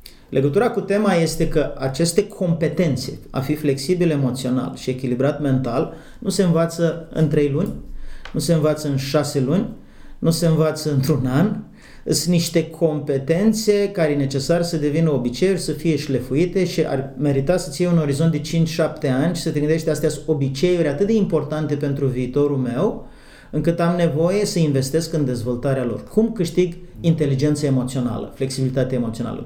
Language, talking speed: Romanian, 160 wpm